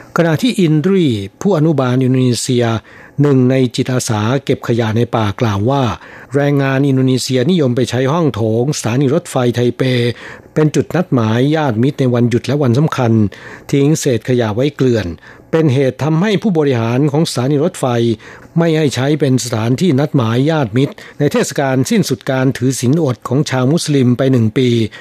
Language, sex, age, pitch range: Thai, male, 60-79, 120-145 Hz